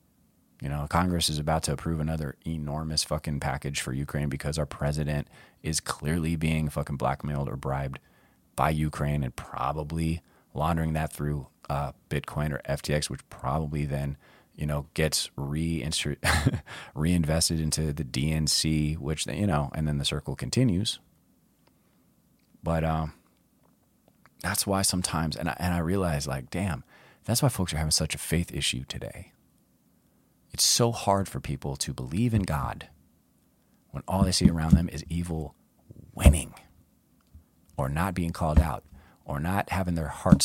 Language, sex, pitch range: English, male, 75-85 Hz